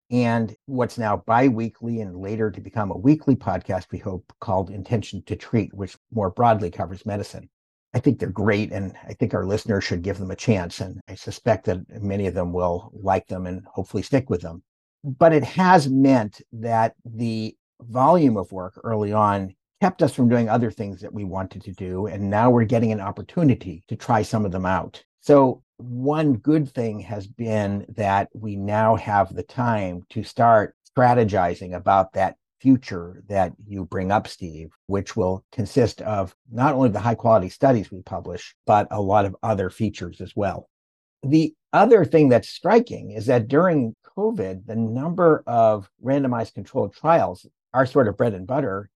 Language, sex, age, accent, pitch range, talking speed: English, male, 50-69, American, 95-120 Hz, 185 wpm